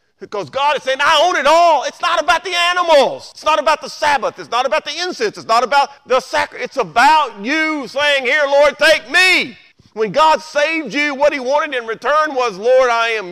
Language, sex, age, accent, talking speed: English, male, 40-59, American, 220 wpm